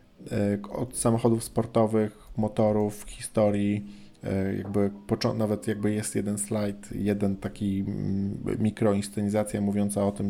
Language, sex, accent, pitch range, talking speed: Polish, male, native, 95-105 Hz, 100 wpm